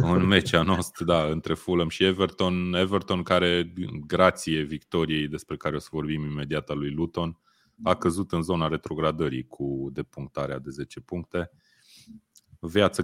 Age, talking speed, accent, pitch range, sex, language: 20-39, 145 wpm, native, 75-110 Hz, male, Romanian